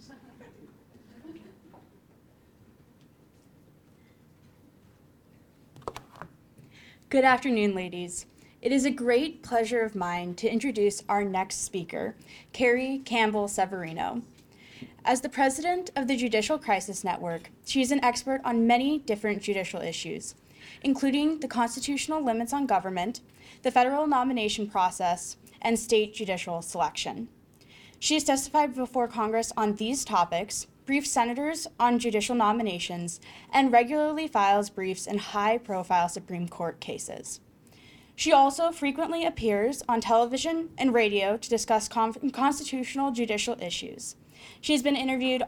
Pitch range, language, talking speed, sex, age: 205-270 Hz, English, 115 wpm, female, 10-29